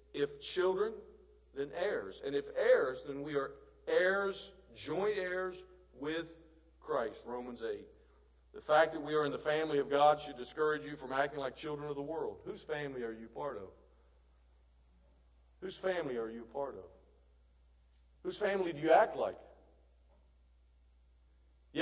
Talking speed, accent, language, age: 155 wpm, American, English, 50-69